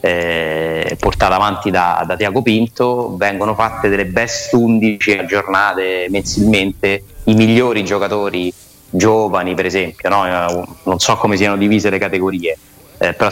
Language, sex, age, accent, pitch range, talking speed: Italian, male, 30-49, native, 95-115 Hz, 130 wpm